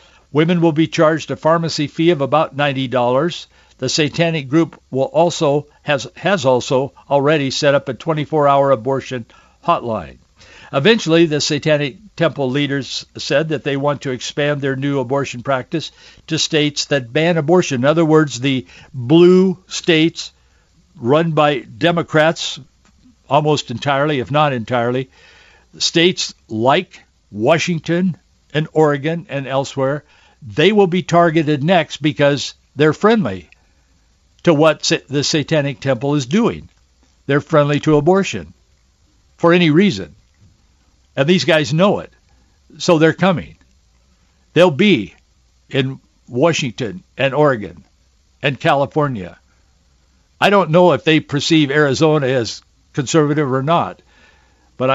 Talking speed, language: 125 wpm, English